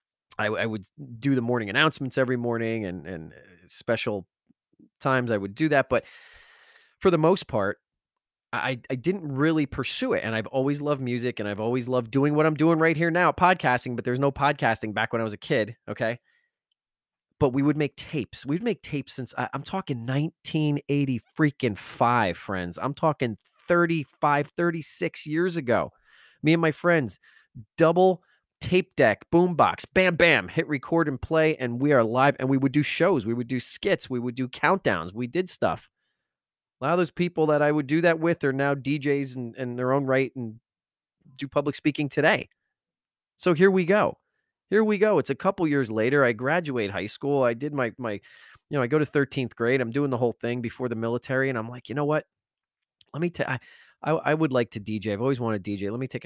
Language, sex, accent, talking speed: English, male, American, 210 wpm